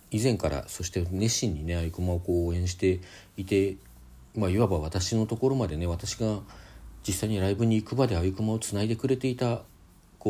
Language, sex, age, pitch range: Japanese, male, 40-59, 85-110 Hz